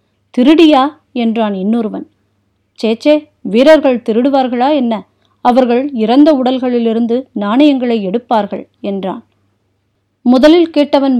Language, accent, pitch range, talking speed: Tamil, native, 220-275 Hz, 80 wpm